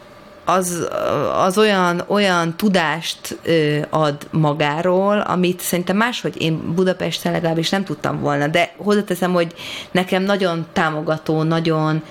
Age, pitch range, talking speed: 30-49, 155-195 Hz, 120 wpm